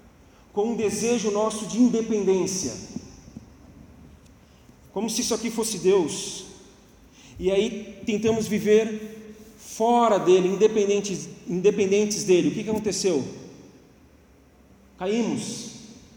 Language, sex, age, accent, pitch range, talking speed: Portuguese, male, 40-59, Brazilian, 200-235 Hz, 95 wpm